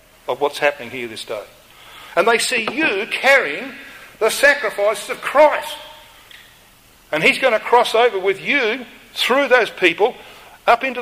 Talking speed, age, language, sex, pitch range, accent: 150 wpm, 50-69, English, male, 190-270 Hz, Australian